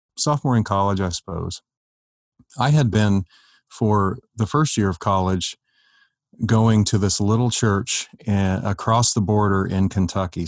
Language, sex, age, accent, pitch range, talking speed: English, male, 40-59, American, 95-115 Hz, 135 wpm